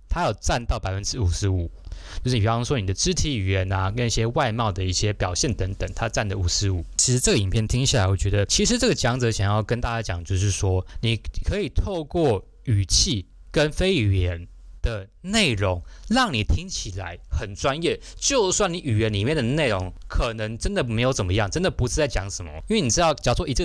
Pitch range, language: 95-130 Hz, Chinese